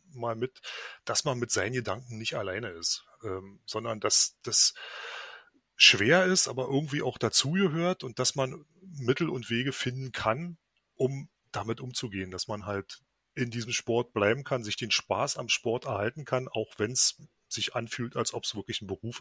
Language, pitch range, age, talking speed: German, 105-130 Hz, 30-49, 180 wpm